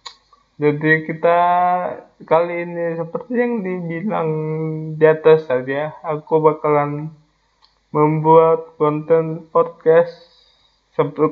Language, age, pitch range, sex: English, 20-39, 145-165 Hz, male